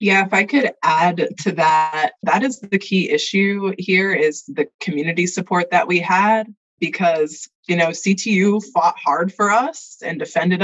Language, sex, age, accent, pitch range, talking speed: English, female, 20-39, American, 160-215 Hz, 170 wpm